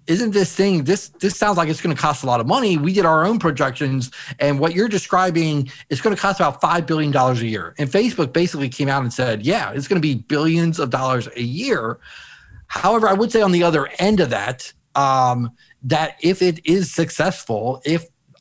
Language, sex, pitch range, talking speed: Danish, male, 125-165 Hz, 220 wpm